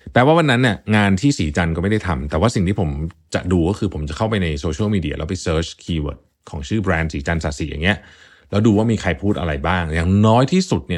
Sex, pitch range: male, 85-110 Hz